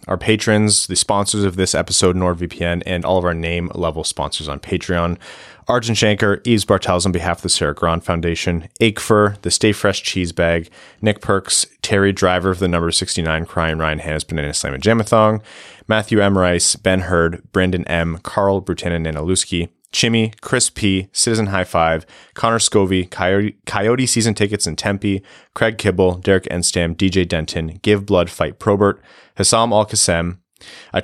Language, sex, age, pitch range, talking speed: English, male, 30-49, 90-115 Hz, 160 wpm